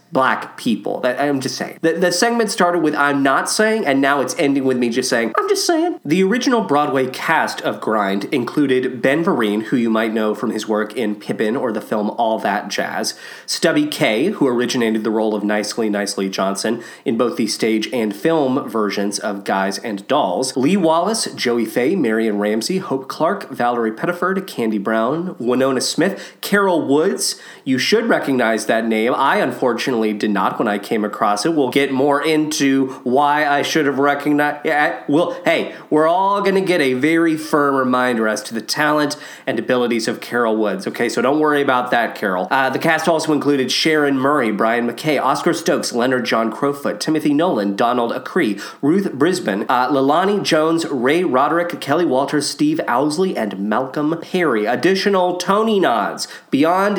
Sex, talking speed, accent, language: male, 180 wpm, American, English